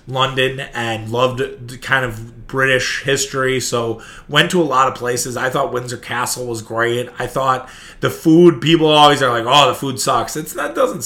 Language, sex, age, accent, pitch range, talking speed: English, male, 20-39, American, 120-145 Hz, 190 wpm